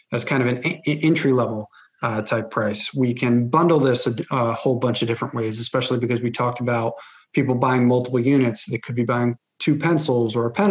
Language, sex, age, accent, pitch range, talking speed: English, male, 30-49, American, 125-155 Hz, 205 wpm